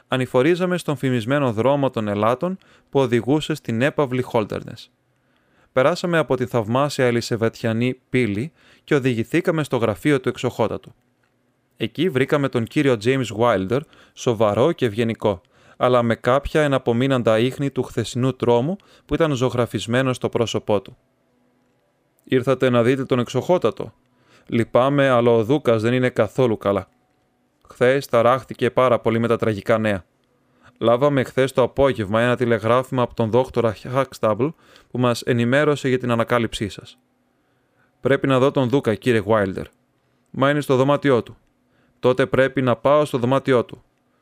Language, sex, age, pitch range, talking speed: Greek, male, 20-39, 115-135 Hz, 140 wpm